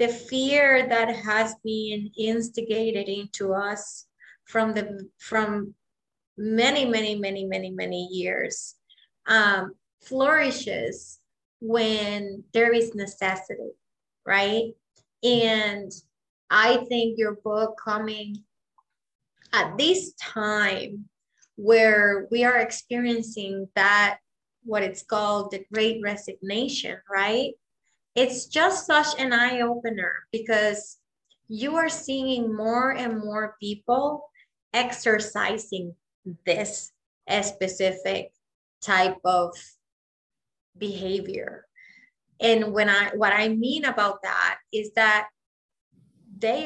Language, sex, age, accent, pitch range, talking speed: English, female, 30-49, American, 200-240 Hz, 100 wpm